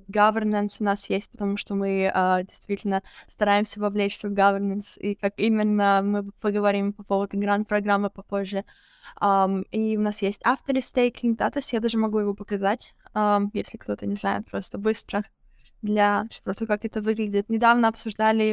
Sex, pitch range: female, 200-225 Hz